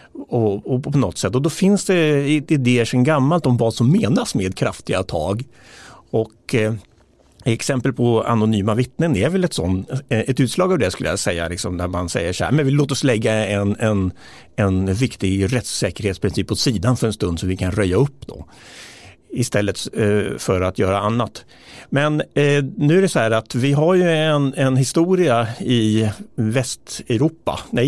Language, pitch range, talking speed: Swedish, 105-150 Hz, 185 wpm